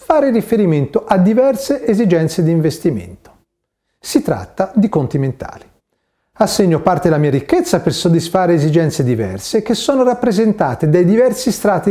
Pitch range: 150-230 Hz